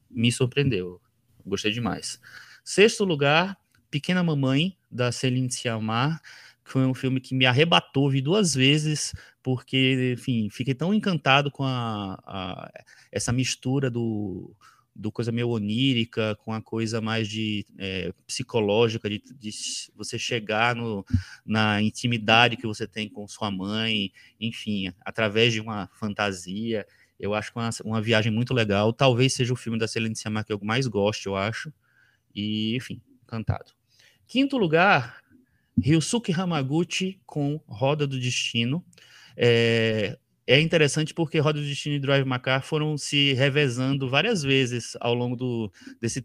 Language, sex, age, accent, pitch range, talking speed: Portuguese, male, 20-39, Brazilian, 110-145 Hz, 145 wpm